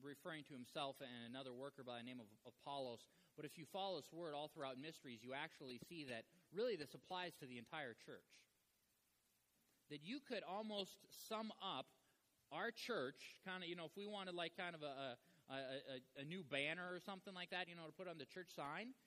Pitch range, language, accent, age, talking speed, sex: 140-200 Hz, English, American, 20-39, 210 wpm, male